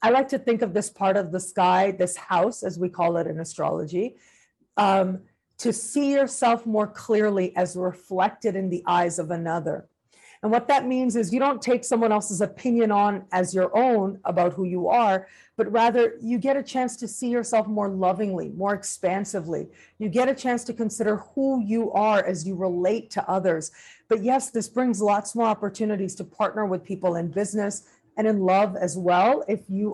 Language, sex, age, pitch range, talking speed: English, female, 40-59, 185-225 Hz, 195 wpm